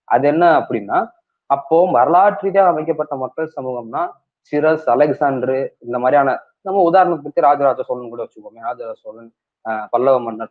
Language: Tamil